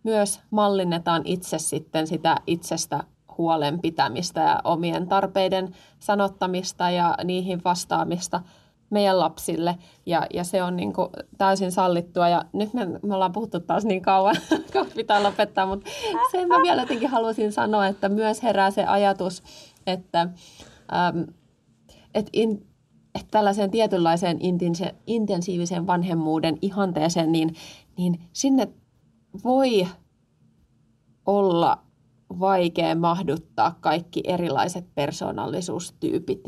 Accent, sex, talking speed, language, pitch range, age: native, female, 105 wpm, Finnish, 170-200 Hz, 20-39